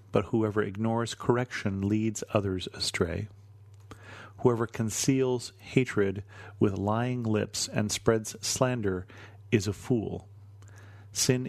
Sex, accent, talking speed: male, American, 105 wpm